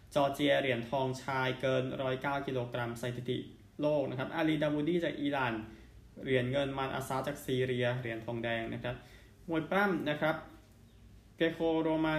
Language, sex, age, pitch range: Thai, male, 20-39, 120-145 Hz